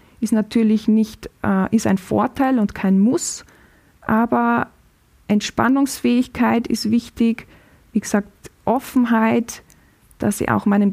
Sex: female